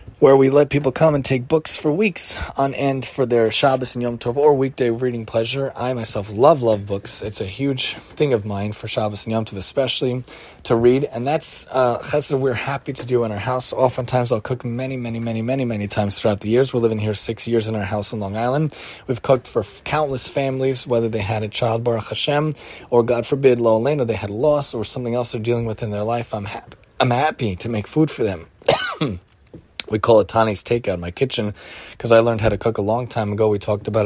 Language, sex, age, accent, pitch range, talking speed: English, male, 30-49, American, 105-130 Hz, 240 wpm